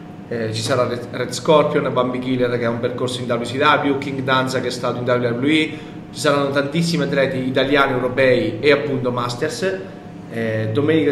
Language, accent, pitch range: Italian, native, 125-150 Hz